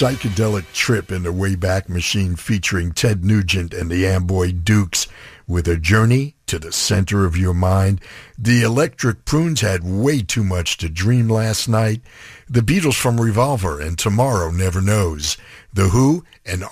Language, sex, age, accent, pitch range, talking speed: English, male, 60-79, American, 90-125 Hz, 160 wpm